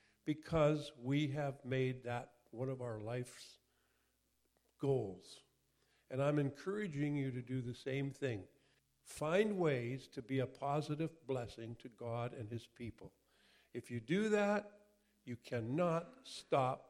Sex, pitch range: male, 125-170 Hz